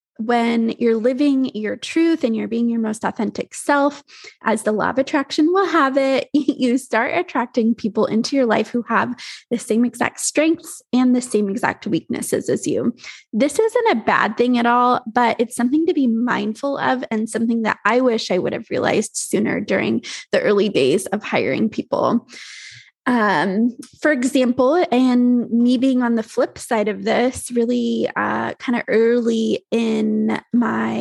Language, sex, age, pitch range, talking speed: English, female, 20-39, 220-260 Hz, 175 wpm